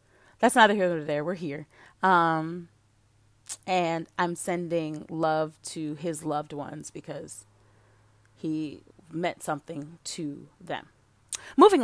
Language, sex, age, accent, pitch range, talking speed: English, female, 30-49, American, 160-265 Hz, 120 wpm